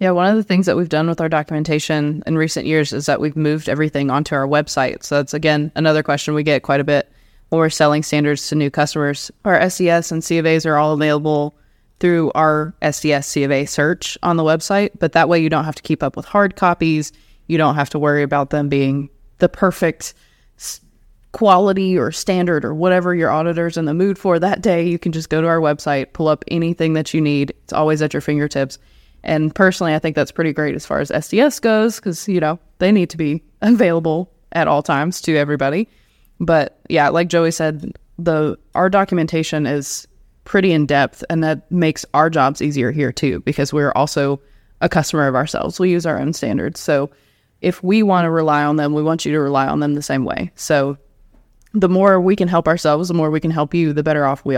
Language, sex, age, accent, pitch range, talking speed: English, female, 20-39, American, 145-170 Hz, 220 wpm